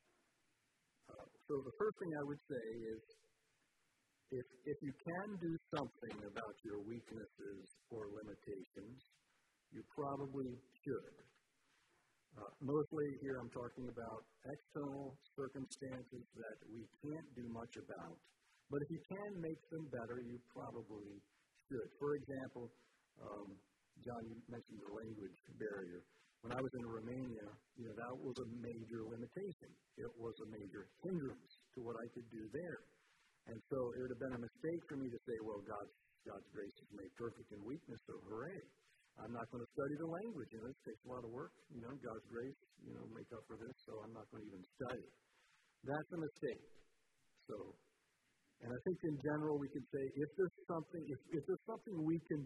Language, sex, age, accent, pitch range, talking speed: English, male, 50-69, American, 115-145 Hz, 175 wpm